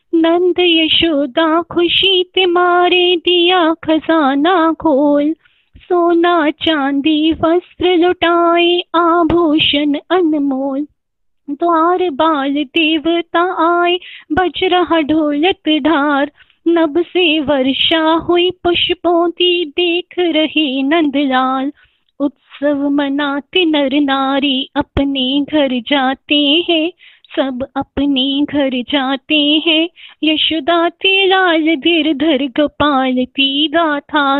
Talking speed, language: 85 wpm, Hindi